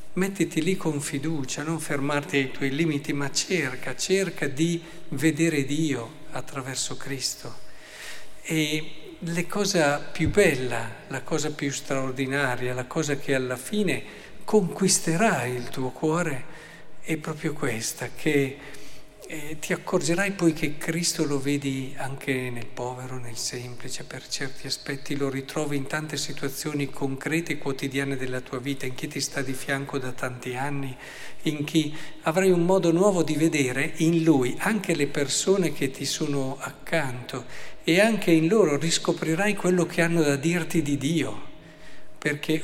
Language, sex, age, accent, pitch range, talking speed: Italian, male, 50-69, native, 135-165 Hz, 150 wpm